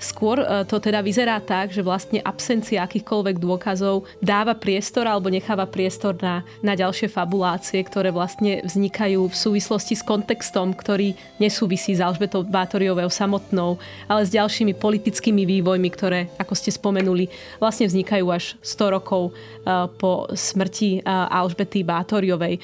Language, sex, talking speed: Slovak, female, 135 wpm